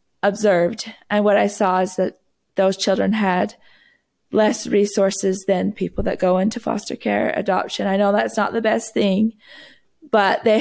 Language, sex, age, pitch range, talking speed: English, female, 20-39, 190-215 Hz, 165 wpm